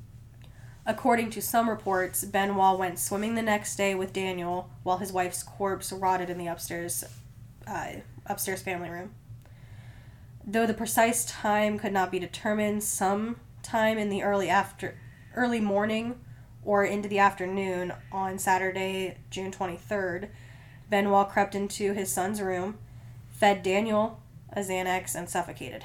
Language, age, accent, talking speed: English, 10-29, American, 135 wpm